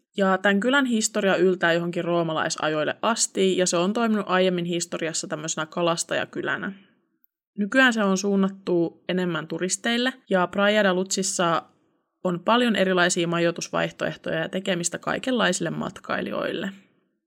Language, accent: Finnish, native